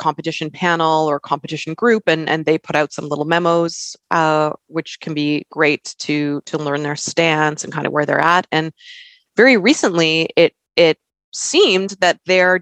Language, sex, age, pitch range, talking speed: English, female, 20-39, 150-180 Hz, 175 wpm